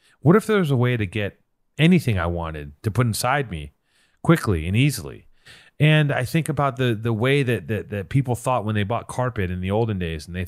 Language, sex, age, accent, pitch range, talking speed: English, male, 30-49, American, 95-130 Hz, 225 wpm